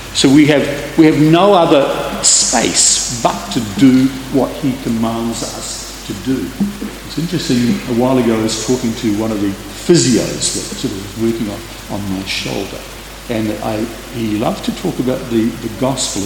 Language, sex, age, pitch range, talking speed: English, male, 60-79, 110-145 Hz, 180 wpm